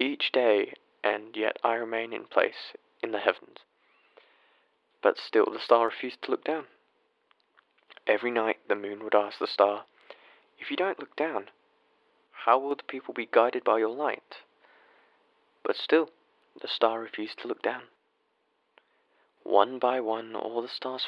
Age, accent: 30-49, British